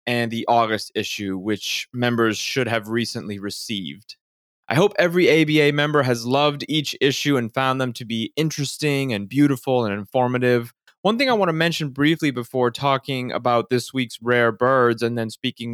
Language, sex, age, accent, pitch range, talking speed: English, male, 20-39, American, 120-150 Hz, 175 wpm